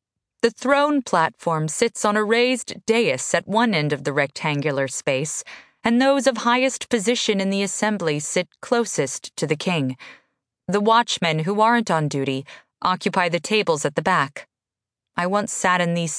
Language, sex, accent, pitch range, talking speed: English, female, American, 165-230 Hz, 165 wpm